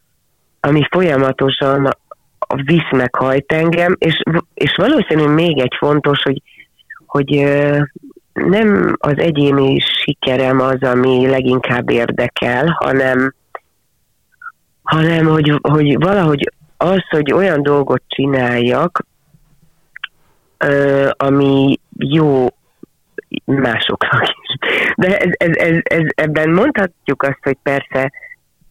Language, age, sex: Hungarian, 30-49, female